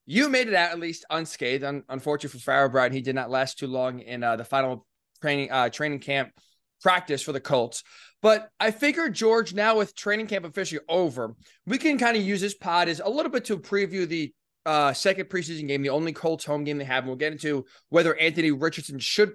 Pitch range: 150-200 Hz